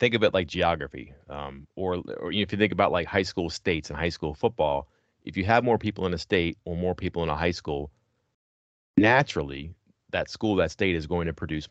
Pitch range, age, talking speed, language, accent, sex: 80-100 Hz, 30-49, 225 wpm, English, American, male